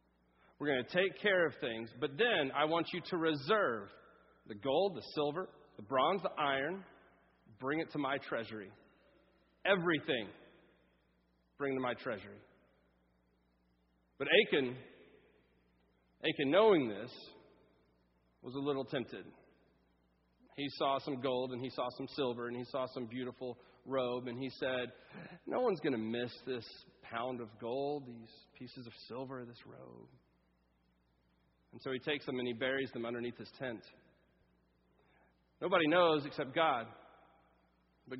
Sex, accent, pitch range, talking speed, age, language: male, American, 115-155 Hz, 145 wpm, 40-59, English